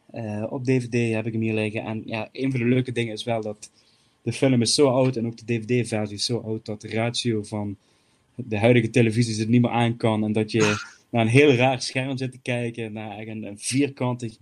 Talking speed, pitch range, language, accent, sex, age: 235 wpm, 110-130 Hz, Dutch, Dutch, male, 20-39